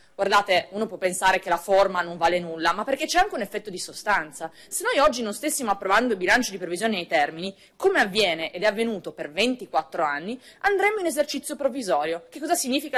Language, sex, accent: Italian, female, native